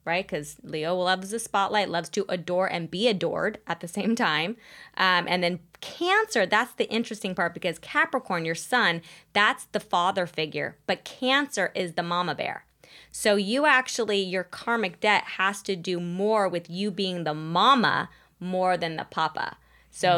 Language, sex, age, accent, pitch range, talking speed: English, female, 20-39, American, 170-210 Hz, 175 wpm